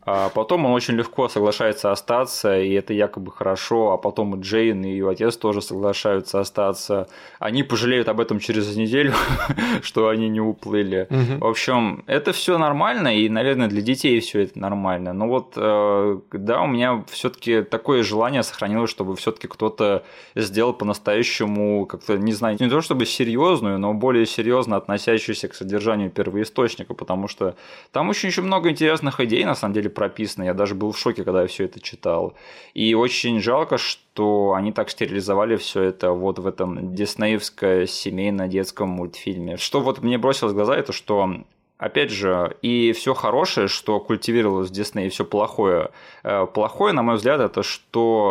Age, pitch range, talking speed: 20-39, 100-115 Hz, 165 wpm